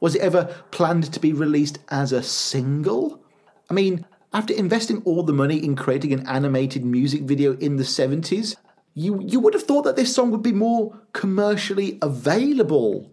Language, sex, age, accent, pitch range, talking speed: English, male, 40-59, British, 140-190 Hz, 180 wpm